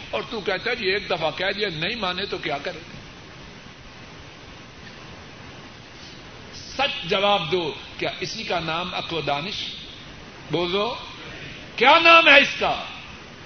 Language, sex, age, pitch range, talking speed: Urdu, male, 60-79, 155-220 Hz, 130 wpm